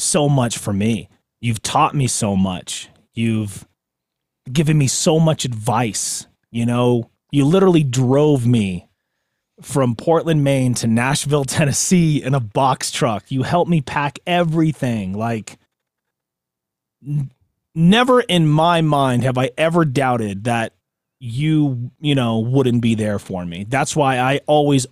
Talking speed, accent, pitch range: 140 wpm, American, 120-155 Hz